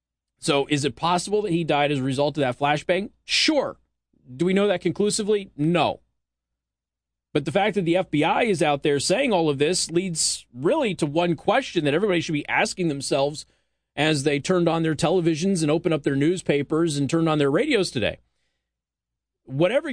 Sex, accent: male, American